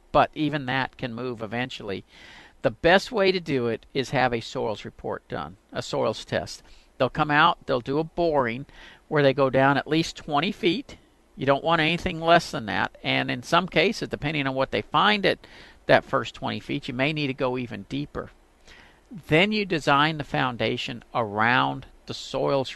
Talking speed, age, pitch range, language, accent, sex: 190 wpm, 50-69, 120-150 Hz, English, American, male